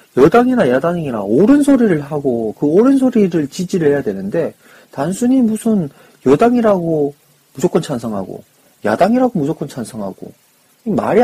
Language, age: Korean, 40-59